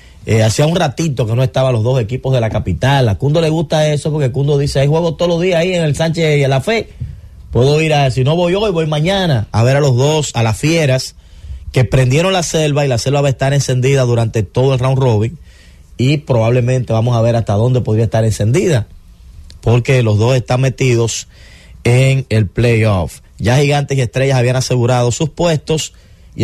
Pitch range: 110-145 Hz